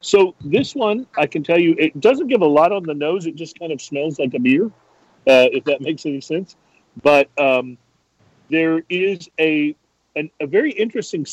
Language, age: English, 40-59